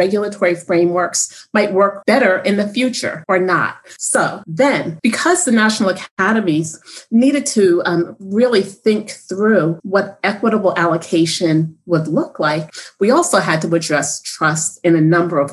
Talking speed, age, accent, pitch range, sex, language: 145 wpm, 40-59, American, 165-210 Hz, female, English